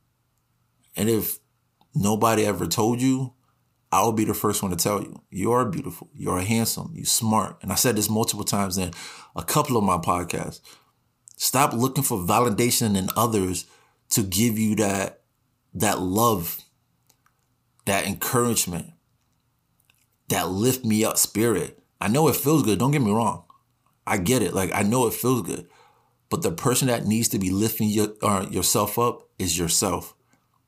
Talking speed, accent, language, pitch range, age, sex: 165 wpm, American, English, 95-120 Hz, 30-49, male